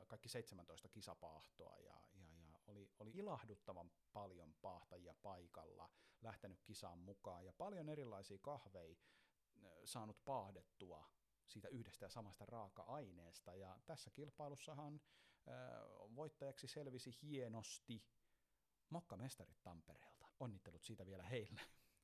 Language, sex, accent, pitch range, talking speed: Finnish, male, native, 90-115 Hz, 105 wpm